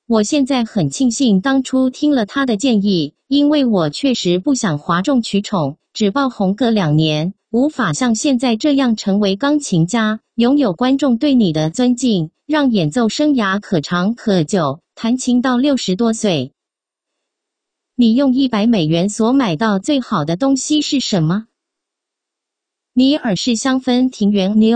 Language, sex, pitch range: English, female, 200-270 Hz